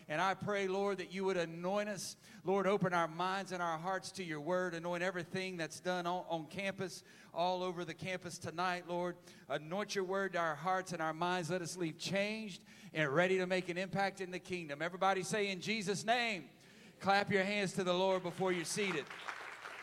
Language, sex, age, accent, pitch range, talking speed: English, male, 40-59, American, 145-185 Hz, 205 wpm